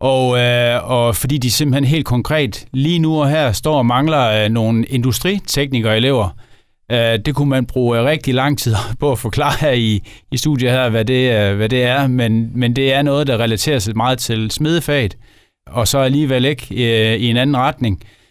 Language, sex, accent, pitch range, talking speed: Danish, male, native, 115-140 Hz, 180 wpm